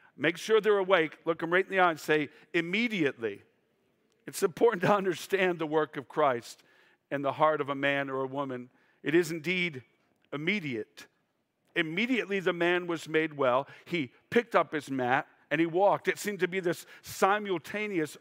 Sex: male